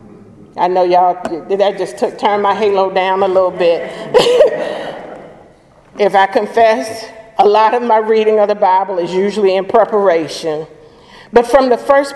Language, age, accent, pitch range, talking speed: English, 50-69, American, 185-225 Hz, 160 wpm